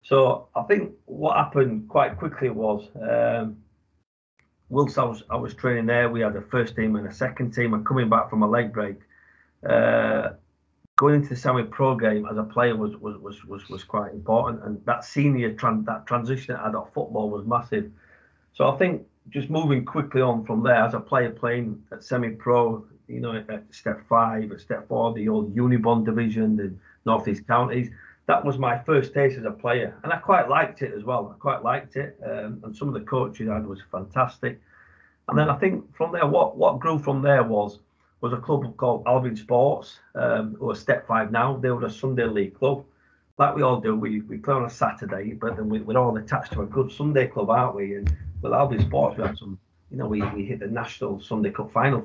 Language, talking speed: English, 220 wpm